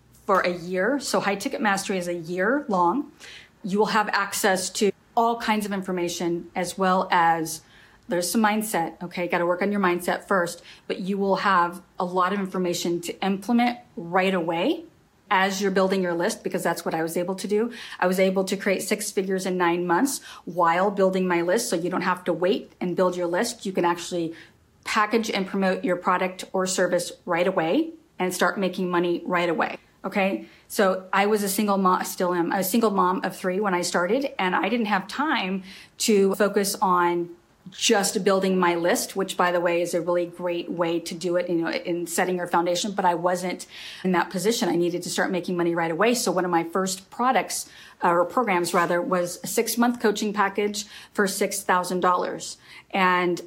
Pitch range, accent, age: 175-200 Hz, American, 30-49